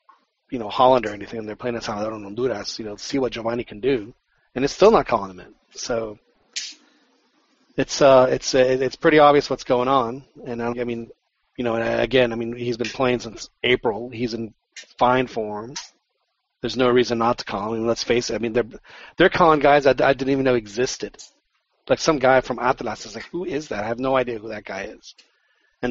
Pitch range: 115-135 Hz